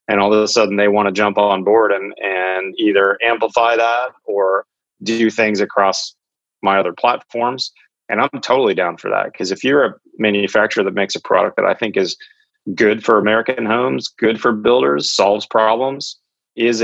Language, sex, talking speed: English, male, 185 wpm